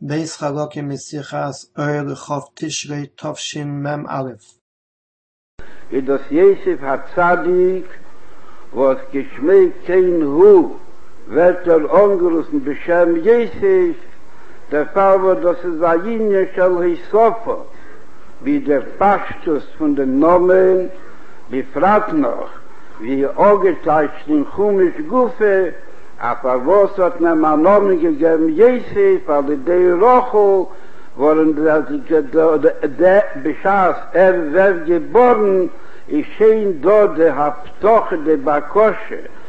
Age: 60-79